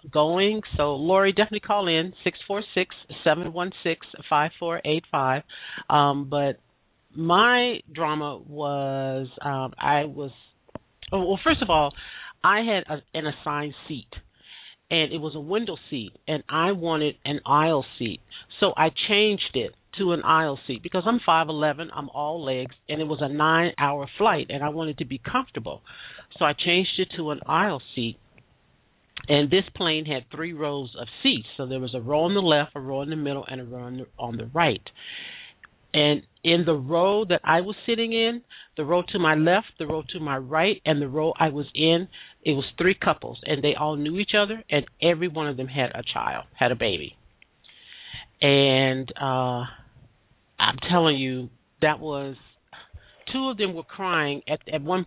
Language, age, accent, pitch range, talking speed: English, 50-69, American, 140-175 Hz, 175 wpm